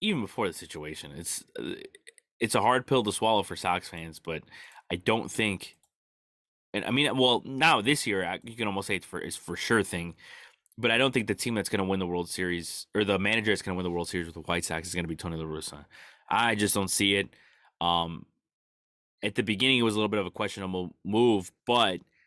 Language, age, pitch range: English, 20-39, 85-105 Hz